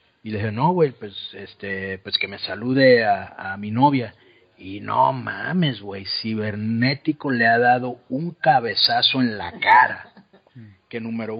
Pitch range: 105-130 Hz